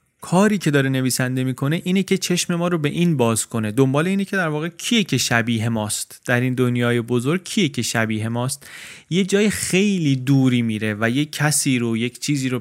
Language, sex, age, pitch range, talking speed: Persian, male, 30-49, 115-150 Hz, 205 wpm